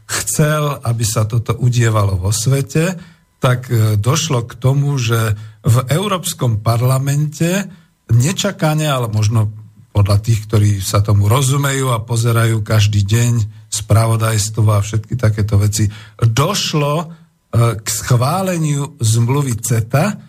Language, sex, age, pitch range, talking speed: Slovak, male, 50-69, 110-135 Hz, 110 wpm